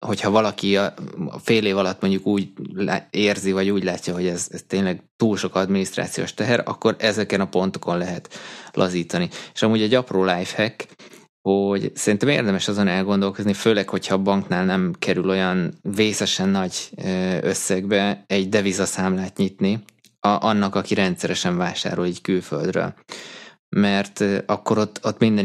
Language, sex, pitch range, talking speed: Hungarian, male, 95-105 Hz, 145 wpm